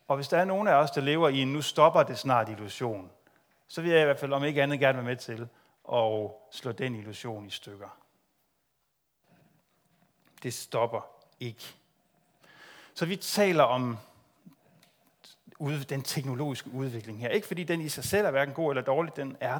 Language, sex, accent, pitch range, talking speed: Danish, male, native, 115-145 Hz, 180 wpm